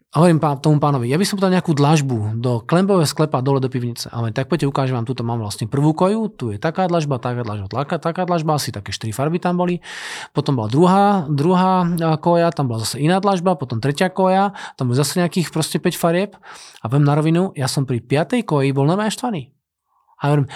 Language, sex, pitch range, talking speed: Slovak, male, 140-185 Hz, 220 wpm